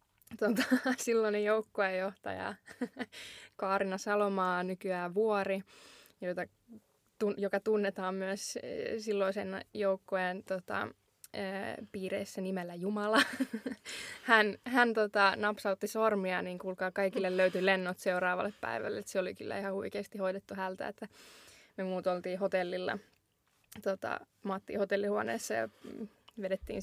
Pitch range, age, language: 185-210 Hz, 20-39, Finnish